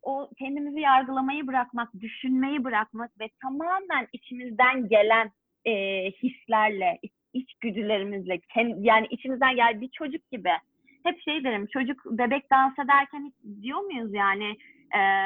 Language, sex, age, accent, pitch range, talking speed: Turkish, female, 30-49, native, 220-310 Hz, 125 wpm